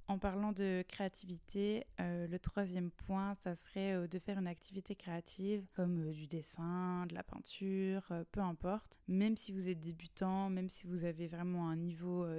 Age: 20-39